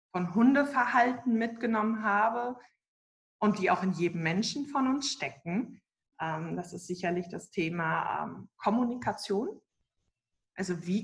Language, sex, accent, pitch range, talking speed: German, female, German, 175-245 Hz, 115 wpm